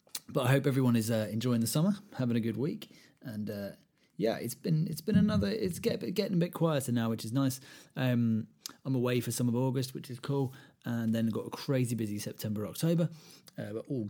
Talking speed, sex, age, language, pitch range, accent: 230 wpm, male, 30-49, English, 105-135 Hz, British